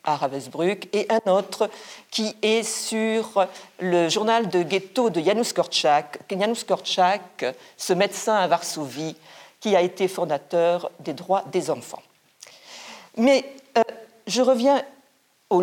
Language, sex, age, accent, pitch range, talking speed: French, female, 50-69, French, 180-230 Hz, 125 wpm